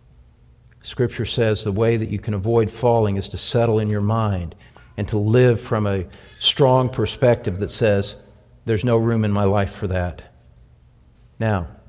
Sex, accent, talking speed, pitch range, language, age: male, American, 165 wpm, 105-140 Hz, English, 50-69